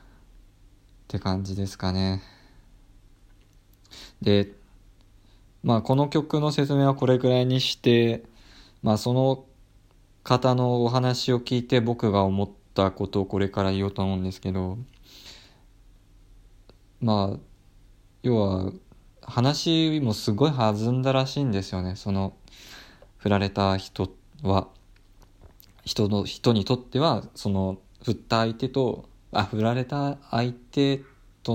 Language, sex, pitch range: Japanese, male, 95-120 Hz